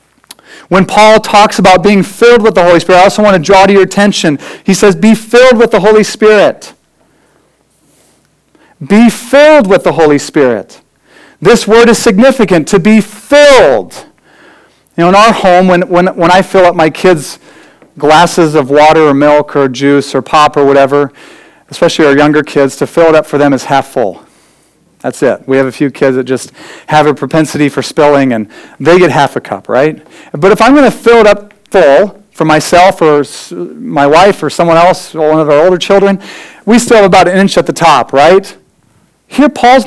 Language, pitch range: English, 160-215 Hz